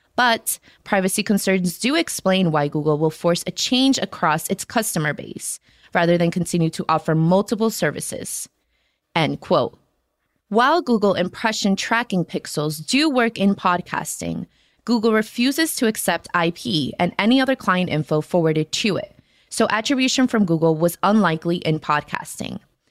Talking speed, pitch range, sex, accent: 140 wpm, 165-225 Hz, female, American